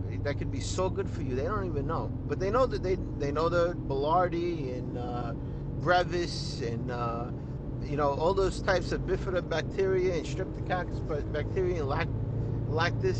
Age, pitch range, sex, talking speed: 50-69, 90-125 Hz, male, 175 wpm